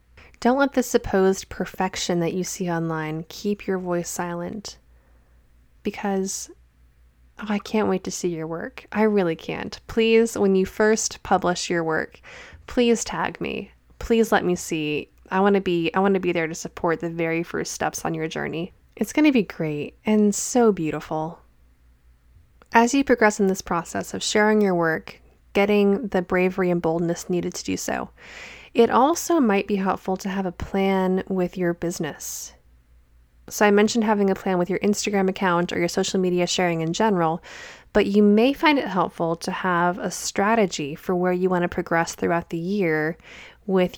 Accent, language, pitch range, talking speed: American, English, 165-205 Hz, 175 wpm